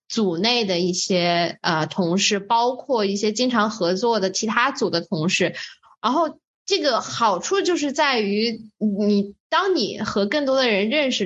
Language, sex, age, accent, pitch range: Chinese, female, 10-29, native, 180-230 Hz